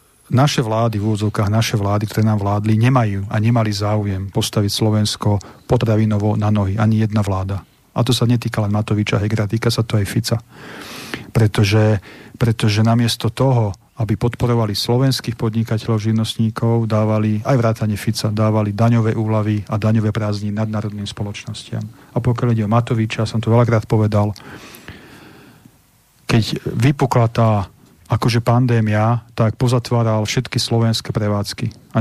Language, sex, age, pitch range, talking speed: Slovak, male, 40-59, 105-120 Hz, 140 wpm